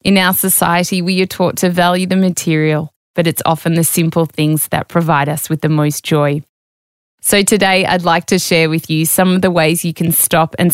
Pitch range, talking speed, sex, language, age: 155-180 Hz, 220 wpm, female, English, 20-39